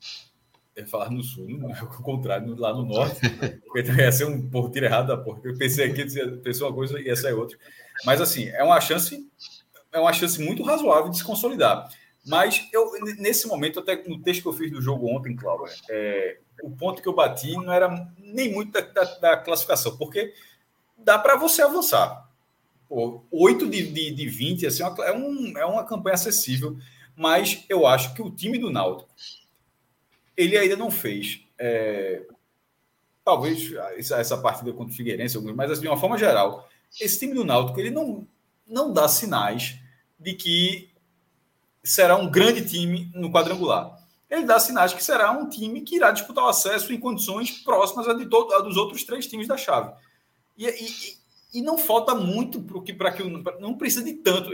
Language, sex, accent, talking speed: Portuguese, male, Brazilian, 180 wpm